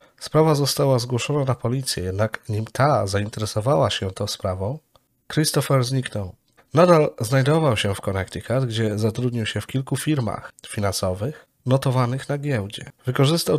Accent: native